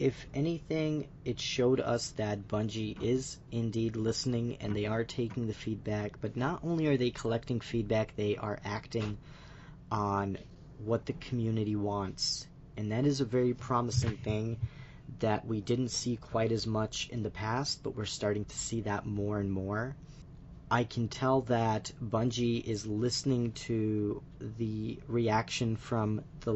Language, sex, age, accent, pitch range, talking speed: English, male, 40-59, American, 105-130 Hz, 155 wpm